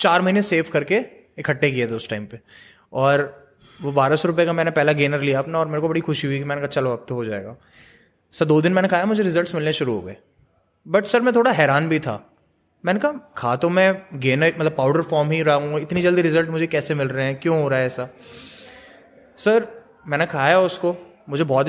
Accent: native